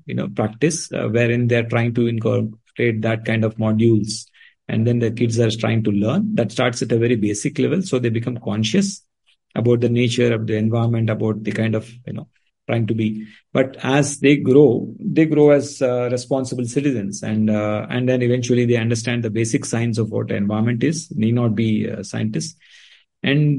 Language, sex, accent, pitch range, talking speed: English, male, Indian, 115-135 Hz, 195 wpm